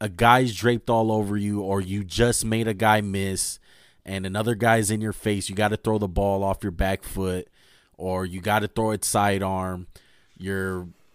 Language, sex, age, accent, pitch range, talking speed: English, male, 20-39, American, 95-120 Hz, 200 wpm